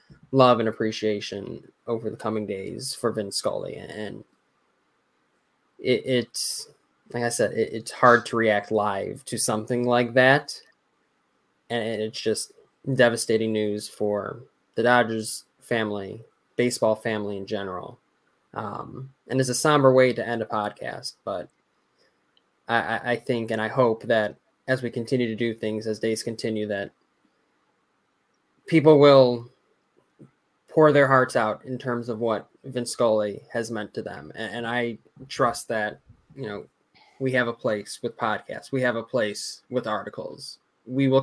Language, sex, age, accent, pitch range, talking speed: English, male, 10-29, American, 110-130 Hz, 150 wpm